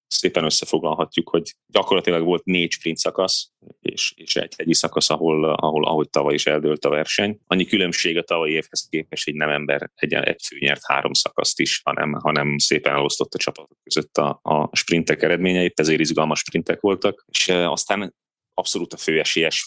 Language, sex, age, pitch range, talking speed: Hungarian, male, 30-49, 75-95 Hz, 175 wpm